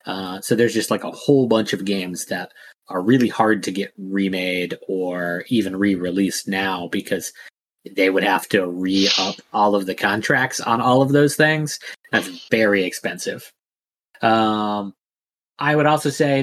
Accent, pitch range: American, 95-120 Hz